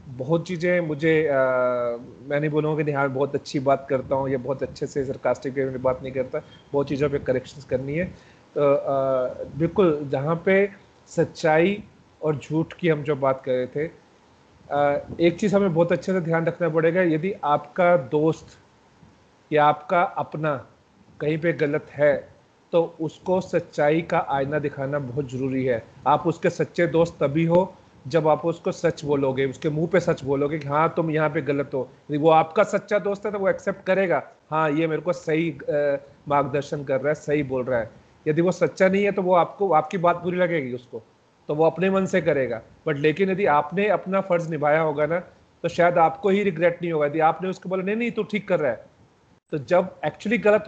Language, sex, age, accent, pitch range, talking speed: Hindi, male, 40-59, native, 145-175 Hz, 200 wpm